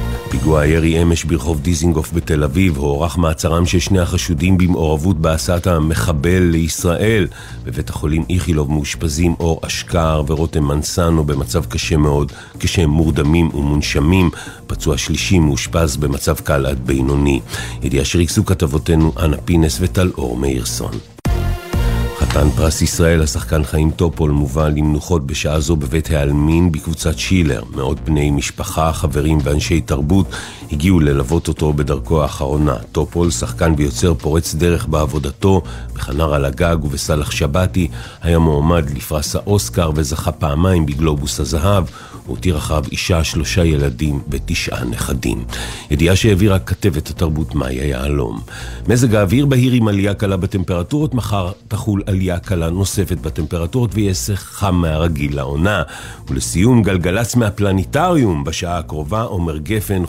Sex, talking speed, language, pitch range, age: male, 125 wpm, English, 75-95 Hz, 40-59